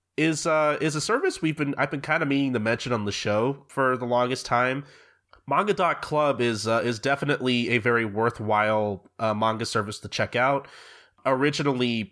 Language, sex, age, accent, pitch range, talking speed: English, male, 20-39, American, 100-120 Hz, 185 wpm